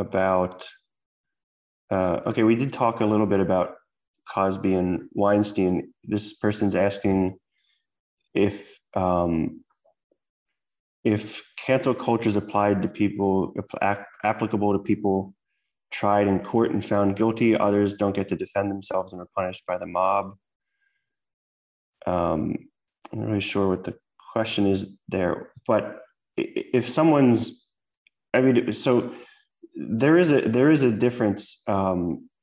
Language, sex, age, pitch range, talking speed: English, male, 20-39, 95-110 Hz, 130 wpm